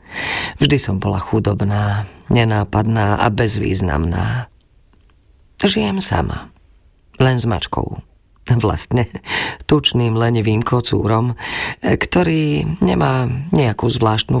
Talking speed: 85 wpm